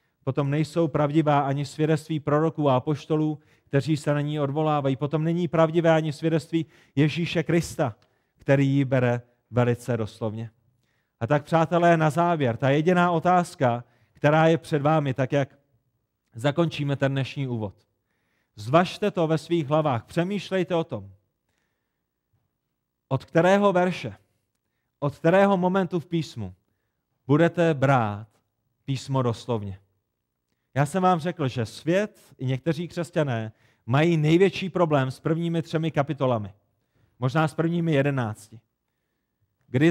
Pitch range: 120-165 Hz